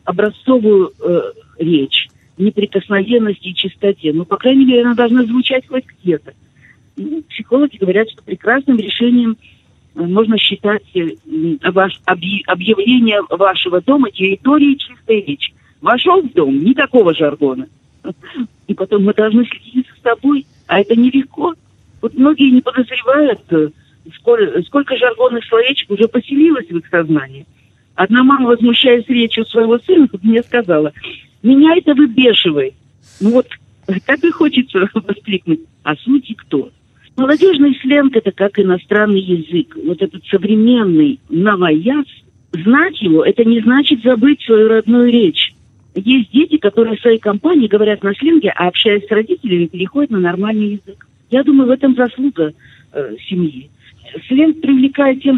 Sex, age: female, 50-69